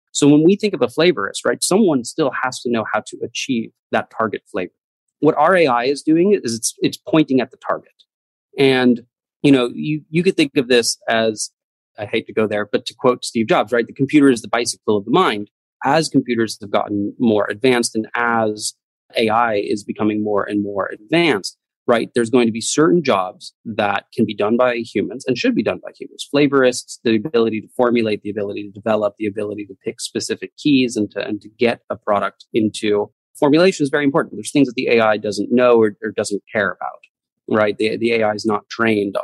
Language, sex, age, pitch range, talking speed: English, male, 30-49, 105-130 Hz, 215 wpm